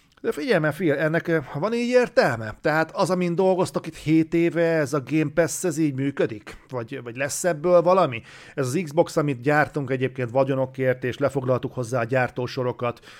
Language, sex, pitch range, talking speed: Hungarian, male, 125-160 Hz, 175 wpm